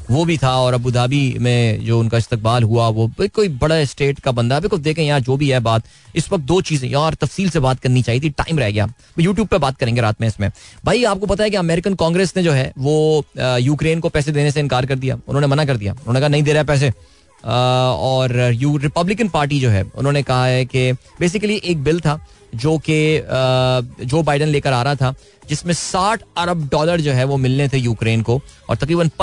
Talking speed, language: 230 wpm, Hindi